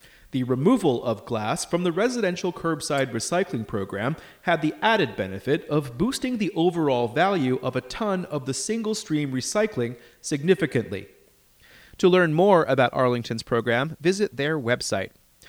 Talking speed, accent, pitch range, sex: 145 wpm, American, 130-210 Hz, male